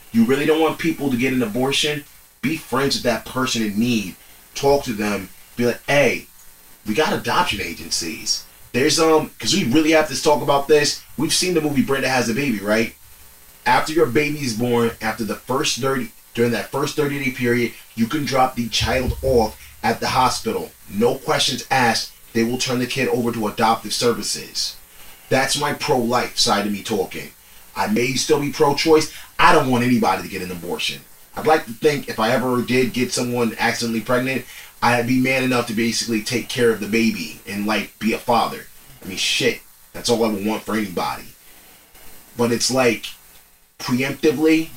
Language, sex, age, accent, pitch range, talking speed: English, male, 30-49, American, 105-130 Hz, 190 wpm